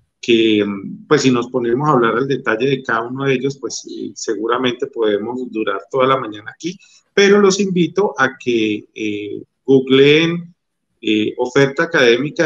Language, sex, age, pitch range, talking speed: Spanish, male, 40-59, 120-150 Hz, 160 wpm